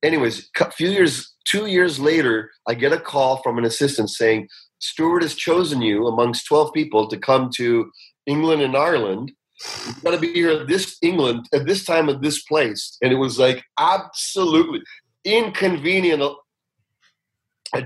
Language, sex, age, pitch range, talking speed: English, male, 40-59, 125-160 Hz, 165 wpm